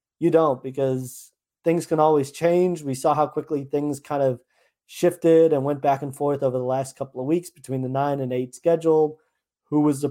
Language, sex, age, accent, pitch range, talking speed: English, male, 30-49, American, 130-160 Hz, 210 wpm